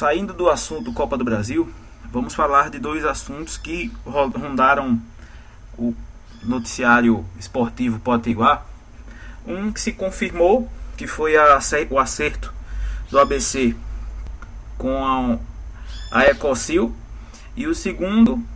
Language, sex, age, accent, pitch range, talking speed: Portuguese, male, 20-39, Brazilian, 115-175 Hz, 105 wpm